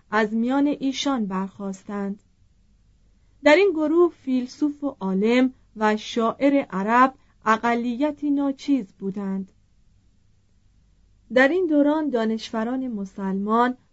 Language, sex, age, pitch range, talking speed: Persian, female, 30-49, 200-275 Hz, 90 wpm